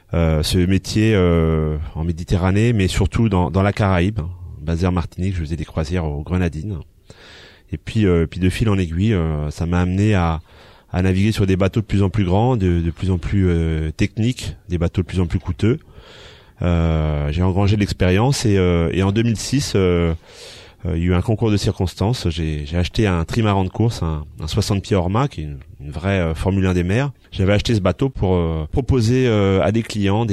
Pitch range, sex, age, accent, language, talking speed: 85-105 Hz, male, 30-49, French, French, 220 wpm